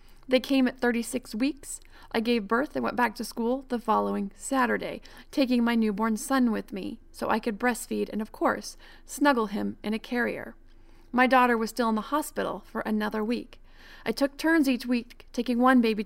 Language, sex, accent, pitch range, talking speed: English, female, American, 225-265 Hz, 195 wpm